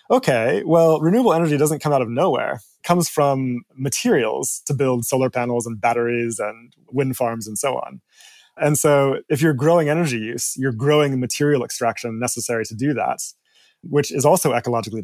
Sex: male